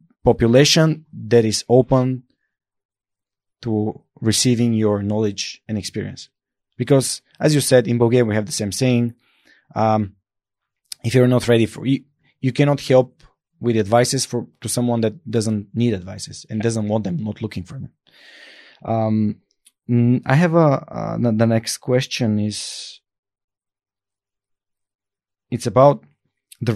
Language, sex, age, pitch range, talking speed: Bulgarian, male, 20-39, 105-125 Hz, 135 wpm